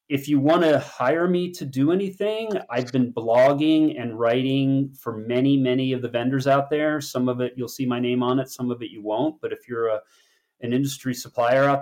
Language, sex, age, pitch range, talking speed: English, male, 30-49, 115-135 Hz, 215 wpm